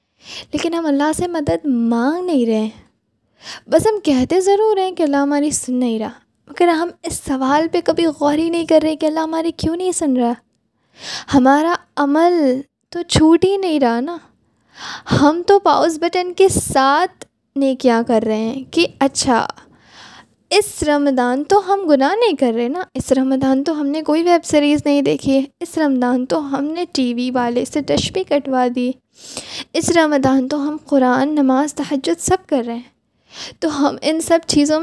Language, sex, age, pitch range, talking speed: Urdu, female, 10-29, 265-335 Hz, 185 wpm